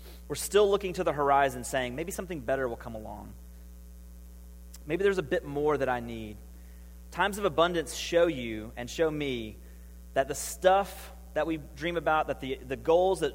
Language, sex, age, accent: English, male, 30-49, American